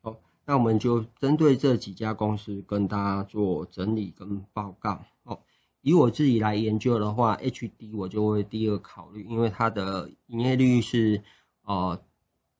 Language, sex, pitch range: Chinese, male, 100-115 Hz